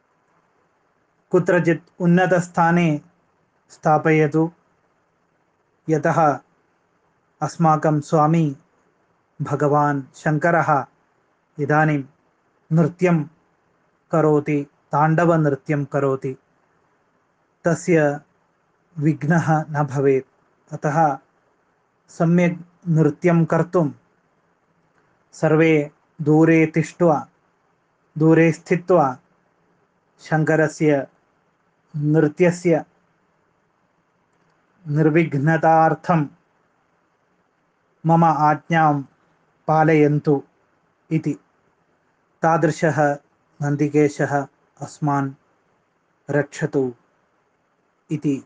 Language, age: Malayalam, 30-49